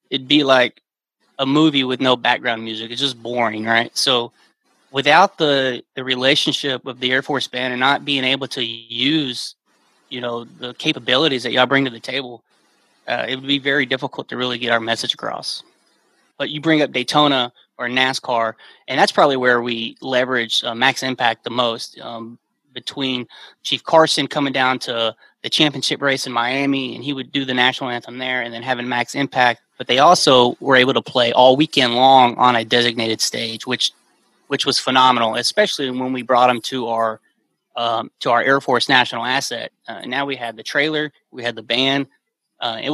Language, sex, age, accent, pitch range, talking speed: English, male, 30-49, American, 120-135 Hz, 195 wpm